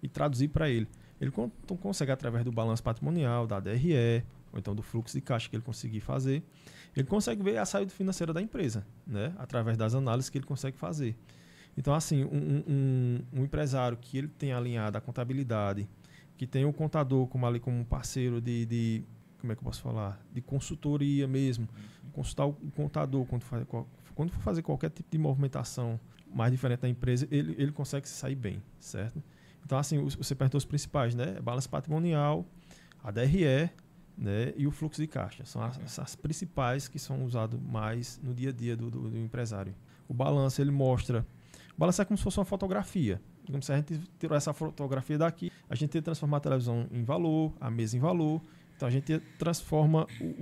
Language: Portuguese